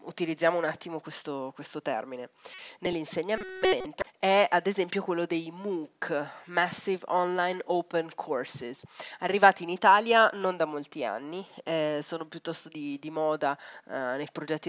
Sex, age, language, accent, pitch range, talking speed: female, 30-49, Italian, native, 150-180 Hz, 135 wpm